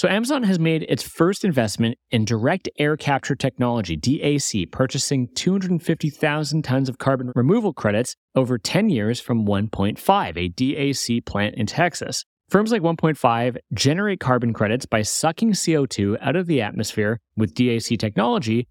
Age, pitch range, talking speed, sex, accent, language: 30-49, 110-150 Hz, 150 wpm, male, American, English